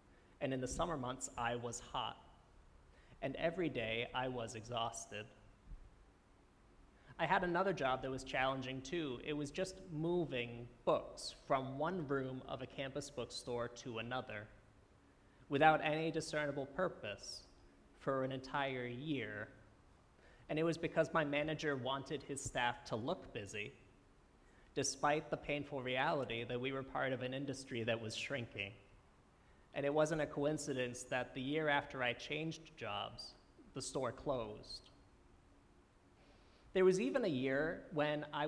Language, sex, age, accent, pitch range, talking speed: English, male, 30-49, American, 115-145 Hz, 145 wpm